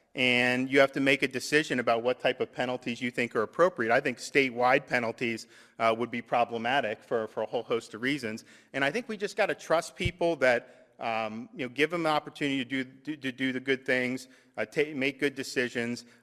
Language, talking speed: English, 230 wpm